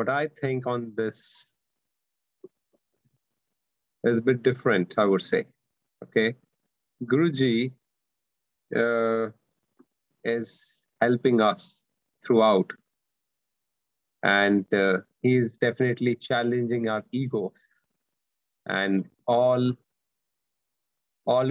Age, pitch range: 30-49, 110-125 Hz